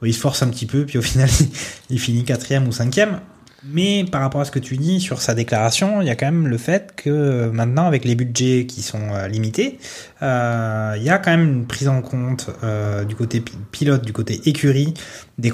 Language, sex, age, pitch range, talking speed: French, male, 20-39, 110-140 Hz, 230 wpm